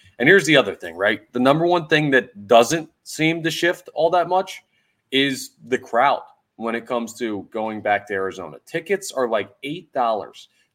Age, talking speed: 30-49, 185 wpm